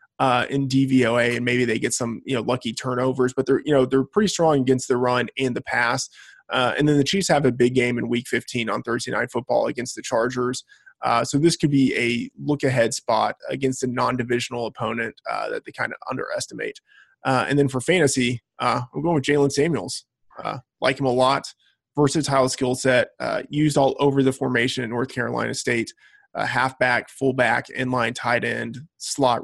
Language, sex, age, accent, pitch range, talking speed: English, male, 20-39, American, 120-140 Hz, 200 wpm